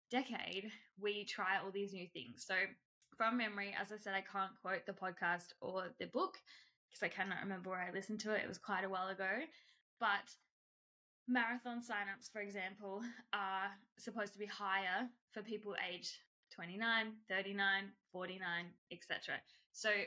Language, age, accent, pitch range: English, 10-29, Australian, 190-215 Hz